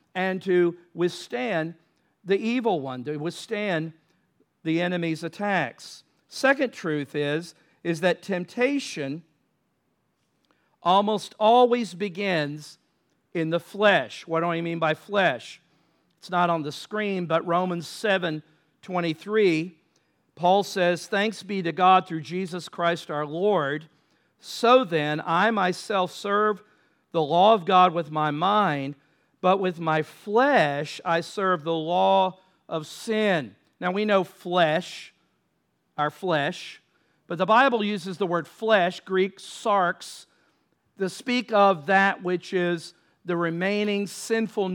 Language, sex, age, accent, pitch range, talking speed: English, male, 50-69, American, 165-205 Hz, 125 wpm